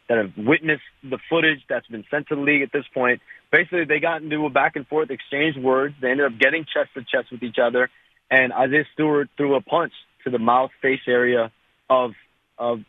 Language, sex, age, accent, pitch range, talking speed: English, male, 30-49, American, 125-145 Hz, 220 wpm